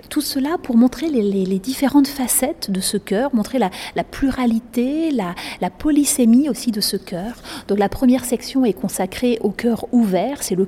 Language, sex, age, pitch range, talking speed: French, female, 30-49, 195-250 Hz, 190 wpm